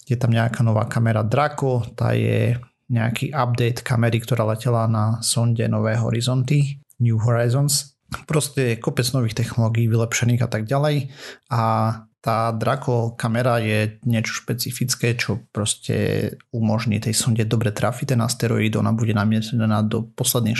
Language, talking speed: Slovak, 145 wpm